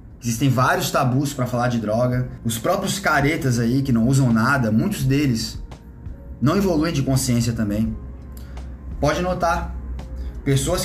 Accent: Brazilian